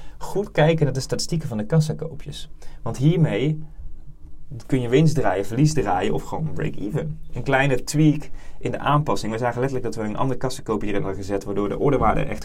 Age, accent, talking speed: 20-39, Dutch, 200 wpm